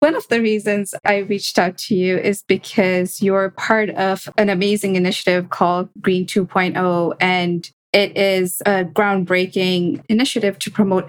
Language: English